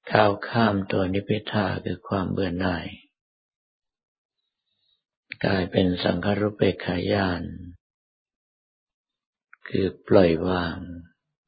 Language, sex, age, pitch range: Thai, male, 50-69, 90-110 Hz